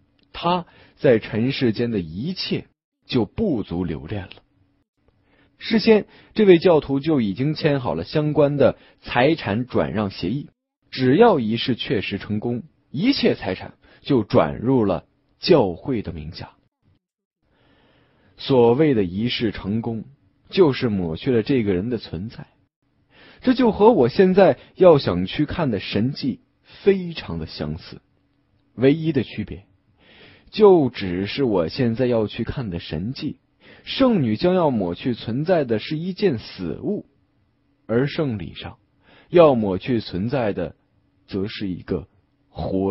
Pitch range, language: 100-150 Hz, Chinese